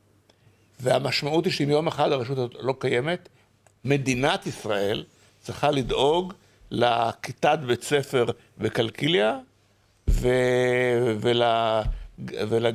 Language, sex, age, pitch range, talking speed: Hebrew, male, 60-79, 105-140 Hz, 90 wpm